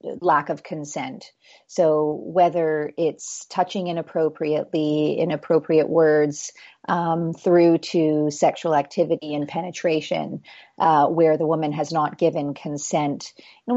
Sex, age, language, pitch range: female, 40-59, English, 155-175 Hz